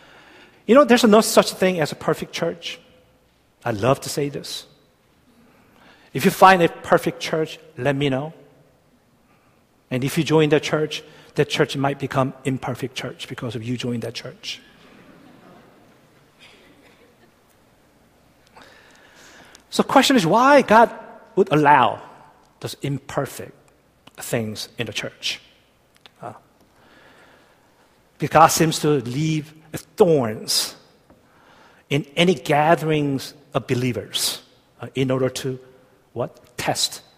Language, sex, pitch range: Korean, male, 130-170 Hz